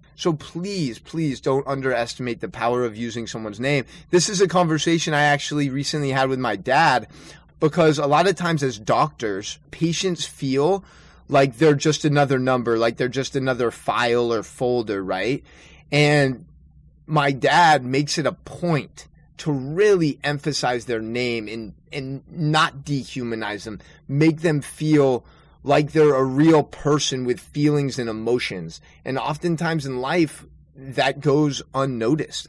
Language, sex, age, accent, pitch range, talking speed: English, male, 20-39, American, 120-150 Hz, 150 wpm